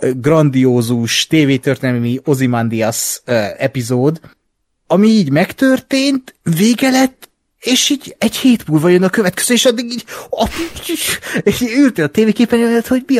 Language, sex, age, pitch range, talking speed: Hungarian, male, 30-49, 120-160 Hz, 135 wpm